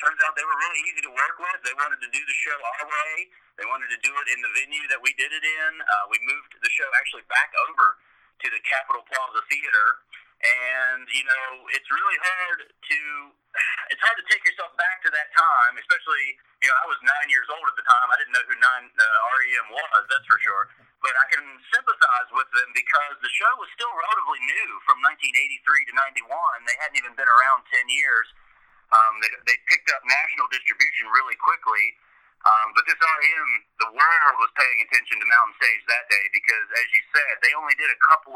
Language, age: English, 40-59